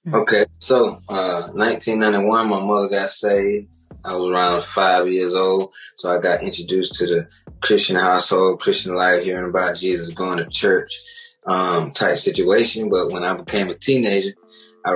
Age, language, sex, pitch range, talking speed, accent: 20-39, English, male, 90-105 Hz, 160 wpm, American